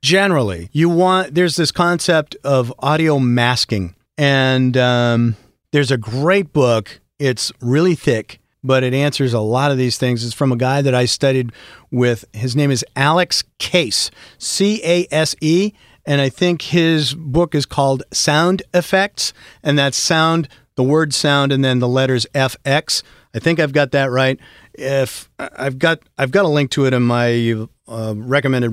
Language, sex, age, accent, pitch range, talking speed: English, male, 40-59, American, 125-160 Hz, 170 wpm